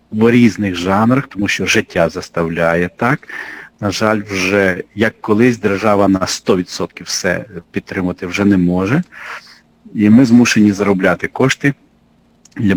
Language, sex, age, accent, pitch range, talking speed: Russian, male, 50-69, native, 95-115 Hz, 125 wpm